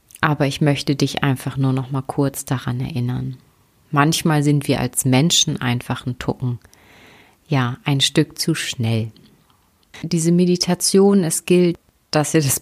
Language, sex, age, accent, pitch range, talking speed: German, female, 30-49, German, 135-165 Hz, 145 wpm